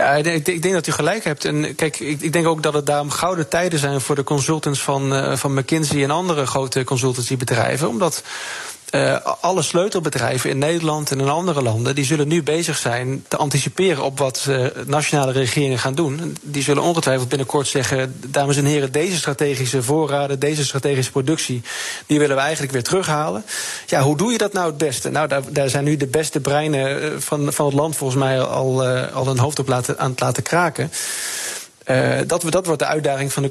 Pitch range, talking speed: 135-160 Hz, 200 wpm